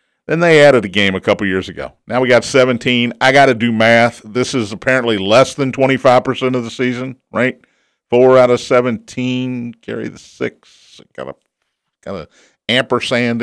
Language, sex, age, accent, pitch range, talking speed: English, male, 50-69, American, 115-155 Hz, 185 wpm